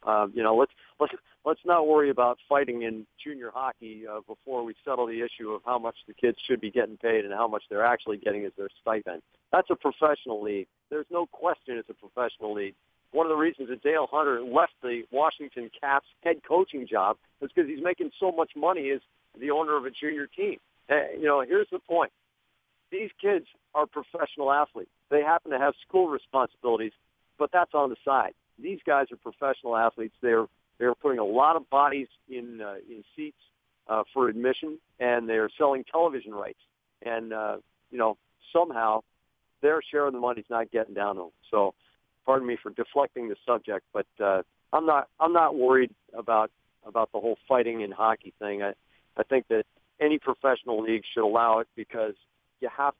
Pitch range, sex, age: 110-150 Hz, male, 50-69